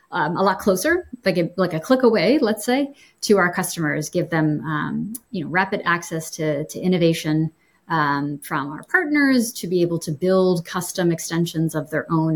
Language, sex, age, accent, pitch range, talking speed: English, female, 30-49, American, 160-210 Hz, 190 wpm